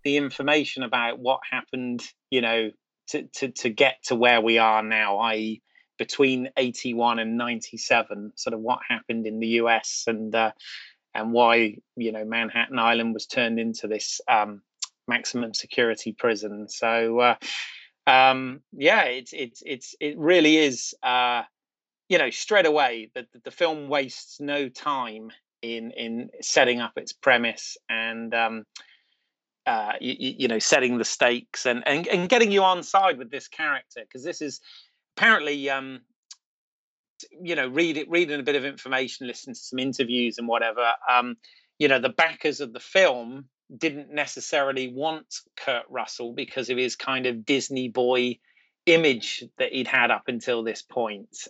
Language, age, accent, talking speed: English, 30-49, British, 160 wpm